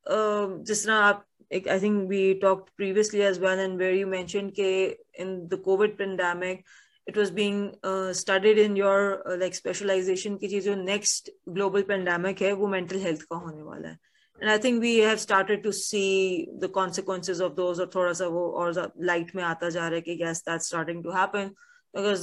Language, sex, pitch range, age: English, female, 185-215 Hz, 20-39